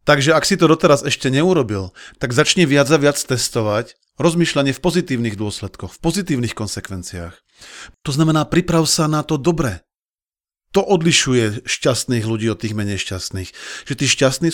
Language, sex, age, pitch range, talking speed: Slovak, male, 40-59, 115-150 Hz, 155 wpm